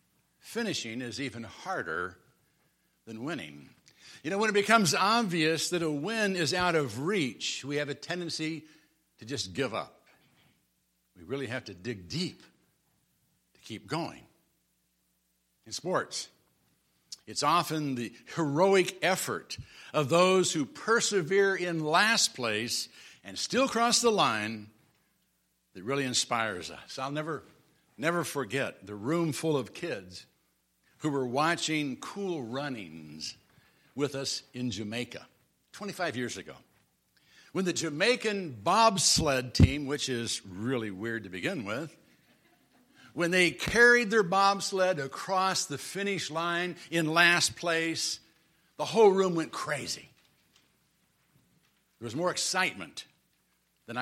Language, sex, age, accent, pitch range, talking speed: English, male, 60-79, American, 120-180 Hz, 125 wpm